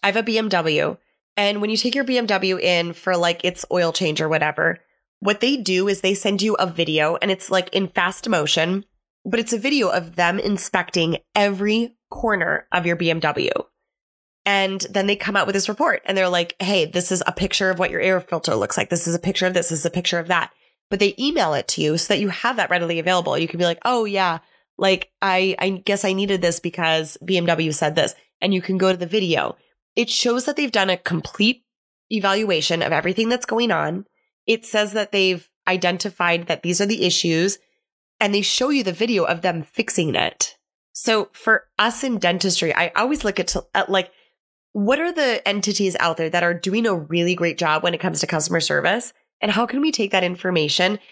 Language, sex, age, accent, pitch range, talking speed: English, female, 20-39, American, 175-210 Hz, 220 wpm